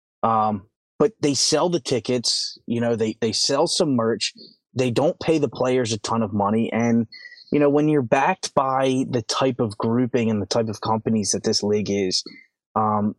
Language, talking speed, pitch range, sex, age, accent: English, 195 wpm, 110-145 Hz, male, 20-39, American